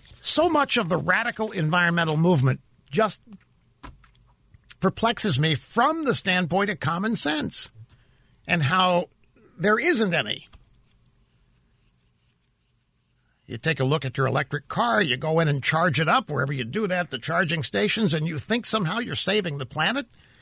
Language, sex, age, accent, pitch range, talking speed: English, male, 60-79, American, 145-220 Hz, 150 wpm